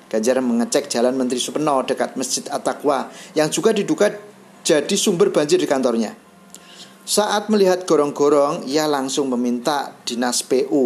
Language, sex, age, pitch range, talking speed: Indonesian, male, 40-59, 130-200 Hz, 125 wpm